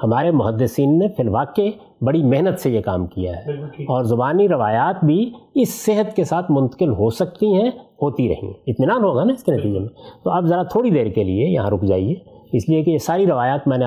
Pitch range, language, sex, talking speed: 125-180 Hz, Urdu, male, 220 wpm